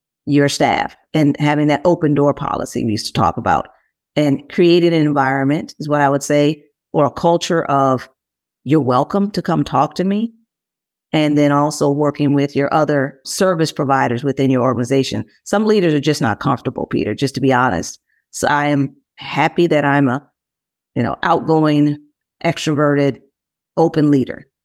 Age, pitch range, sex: 40-59, 140-160 Hz, female